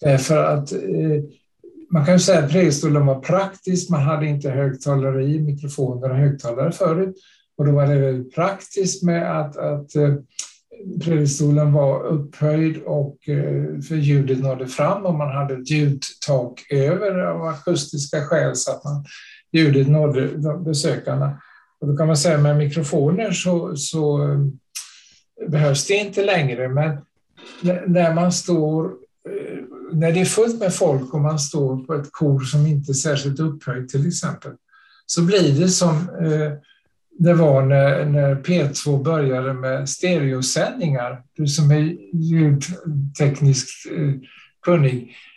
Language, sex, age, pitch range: Swedish, male, 60-79, 140-170 Hz